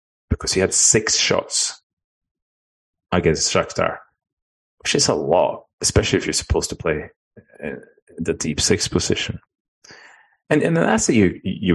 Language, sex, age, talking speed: English, male, 30-49, 145 wpm